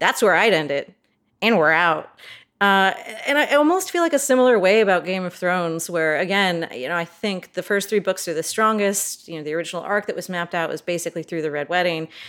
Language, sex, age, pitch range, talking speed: English, female, 30-49, 170-225 Hz, 240 wpm